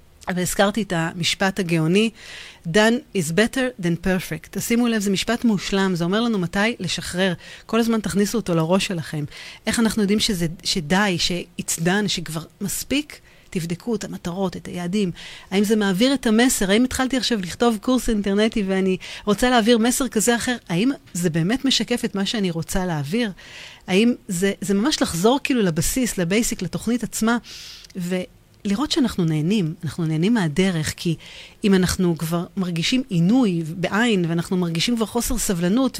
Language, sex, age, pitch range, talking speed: Hebrew, female, 40-59, 175-230 Hz, 155 wpm